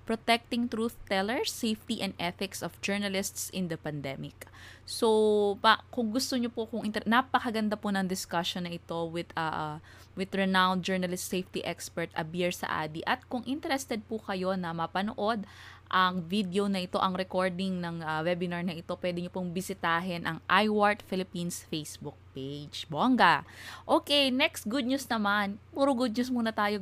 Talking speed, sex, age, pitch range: 160 wpm, female, 20-39, 170-215 Hz